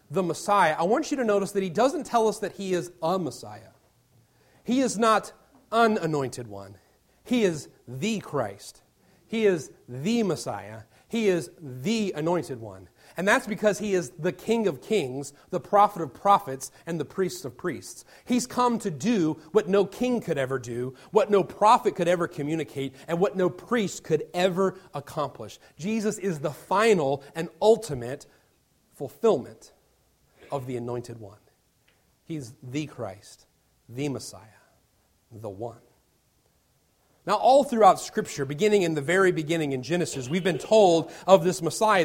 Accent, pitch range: American, 145-205 Hz